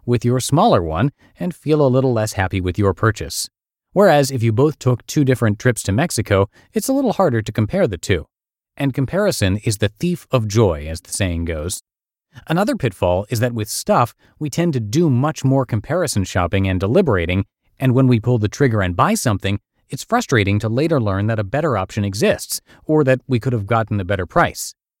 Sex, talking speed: male, 205 wpm